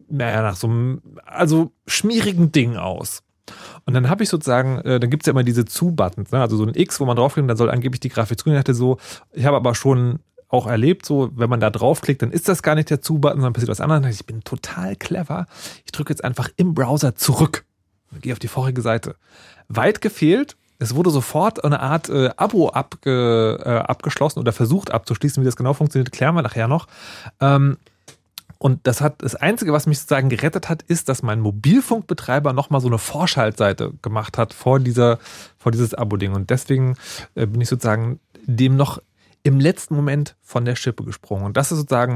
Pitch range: 120-155 Hz